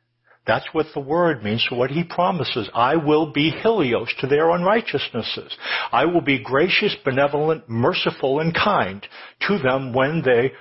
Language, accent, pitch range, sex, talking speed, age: English, American, 120-165 Hz, male, 155 wpm, 60-79